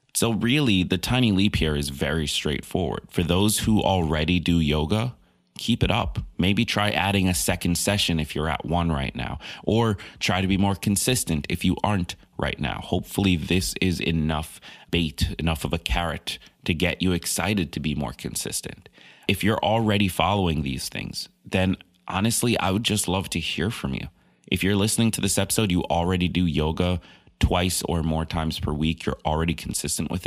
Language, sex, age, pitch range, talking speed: English, male, 30-49, 80-100 Hz, 185 wpm